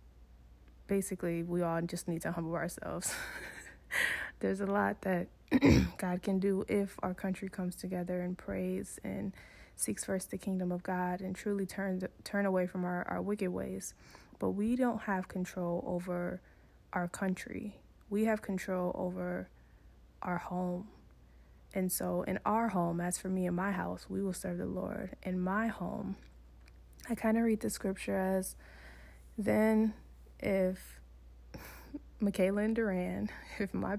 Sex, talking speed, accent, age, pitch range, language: female, 150 wpm, American, 20-39, 170-200 Hz, English